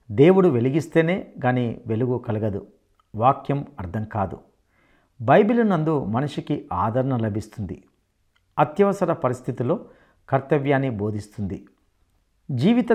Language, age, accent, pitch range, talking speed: Telugu, 50-69, native, 115-160 Hz, 85 wpm